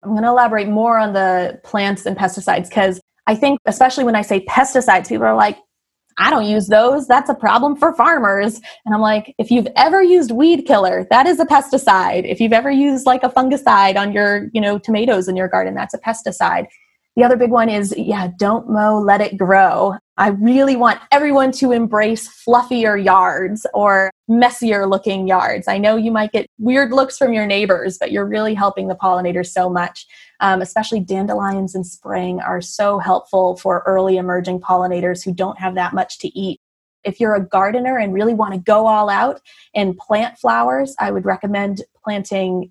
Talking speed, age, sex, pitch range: 195 wpm, 20-39, female, 185-230 Hz